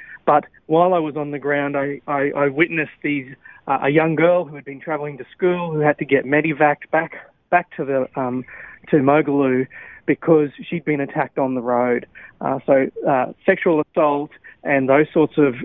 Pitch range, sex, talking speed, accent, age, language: 130-155 Hz, male, 190 wpm, Australian, 30-49, English